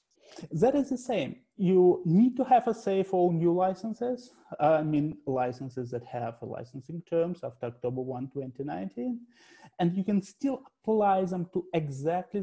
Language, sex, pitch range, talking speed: English, male, 130-180 Hz, 160 wpm